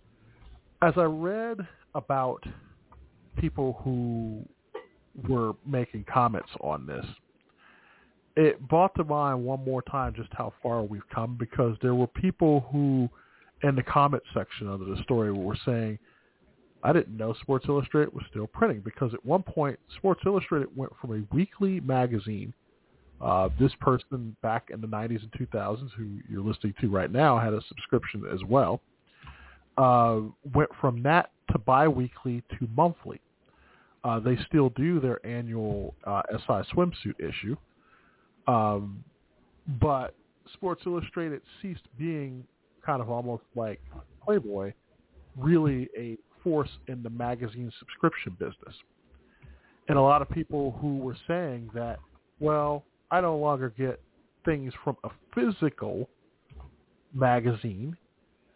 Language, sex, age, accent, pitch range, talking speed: English, male, 40-59, American, 115-145 Hz, 135 wpm